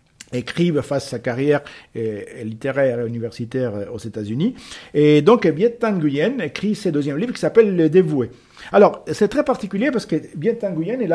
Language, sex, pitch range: French, male, 140-195 Hz